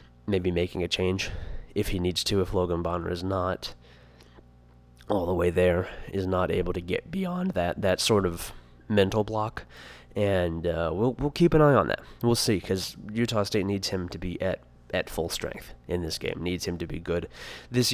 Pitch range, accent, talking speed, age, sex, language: 90-105 Hz, American, 200 wpm, 20-39, male, English